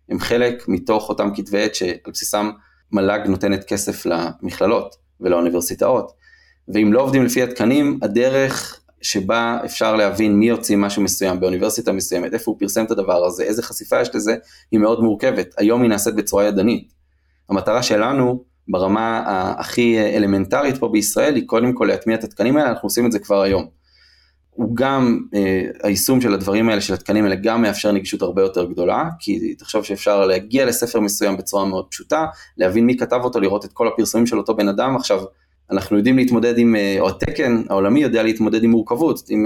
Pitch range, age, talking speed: 100-120 Hz, 20-39, 175 wpm